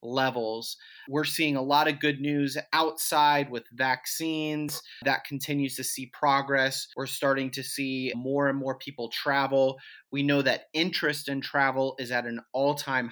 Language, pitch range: English, 125-155 Hz